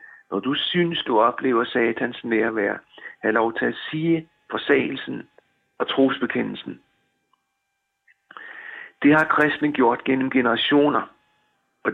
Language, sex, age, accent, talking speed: Danish, male, 60-79, native, 110 wpm